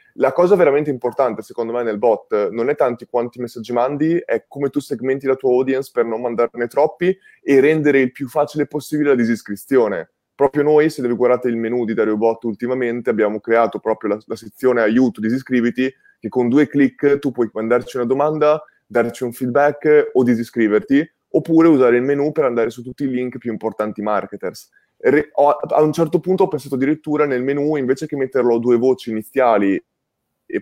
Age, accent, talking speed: 20-39, native, 190 wpm